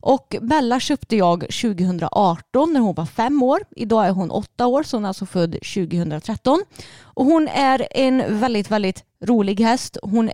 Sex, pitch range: female, 185-235 Hz